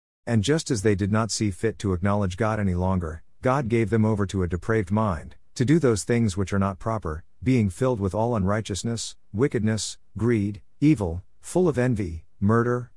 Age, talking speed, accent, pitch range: 50-69, 190 wpm, American, 90-120 Hz